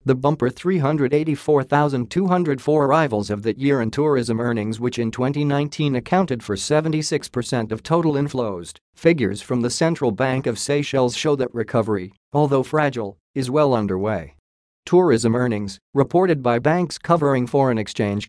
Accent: American